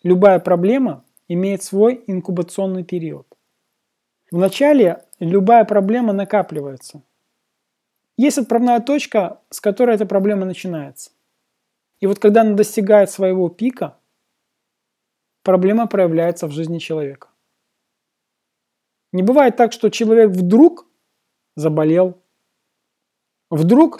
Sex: male